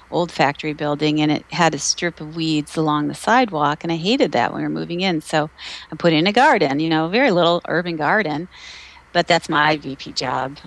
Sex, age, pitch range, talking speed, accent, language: female, 40-59, 155-185 Hz, 220 wpm, American, English